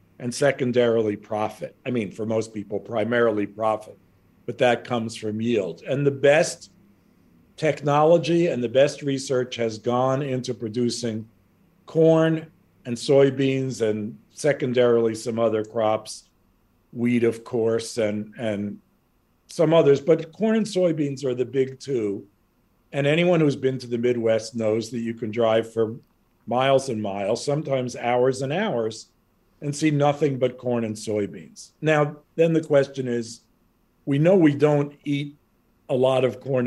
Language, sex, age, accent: English, male, 50-69, American